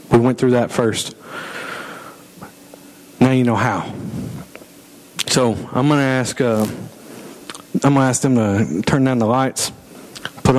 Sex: male